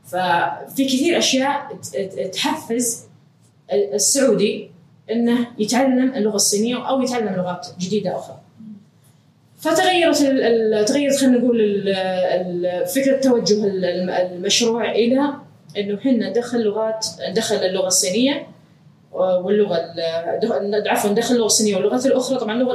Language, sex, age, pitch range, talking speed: Arabic, female, 20-39, 180-240 Hz, 105 wpm